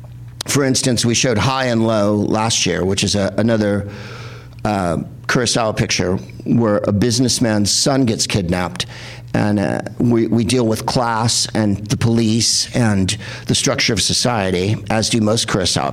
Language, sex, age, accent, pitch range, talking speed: English, male, 50-69, American, 110-135 Hz, 155 wpm